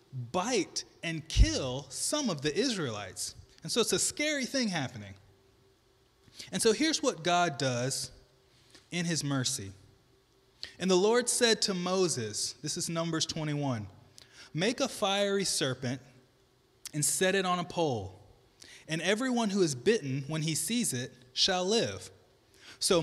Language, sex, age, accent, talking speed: English, male, 20-39, American, 145 wpm